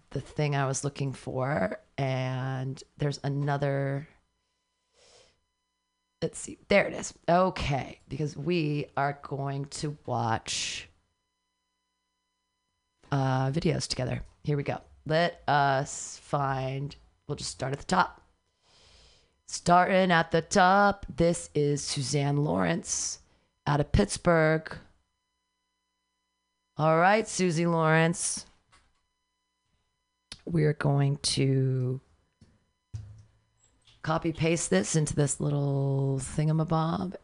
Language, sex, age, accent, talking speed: English, female, 30-49, American, 95 wpm